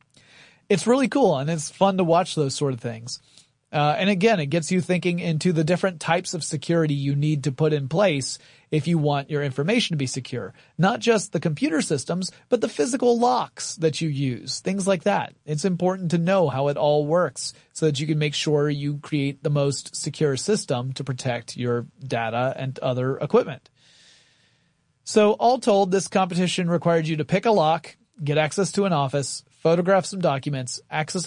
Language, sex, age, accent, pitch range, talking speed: English, male, 30-49, American, 140-180 Hz, 195 wpm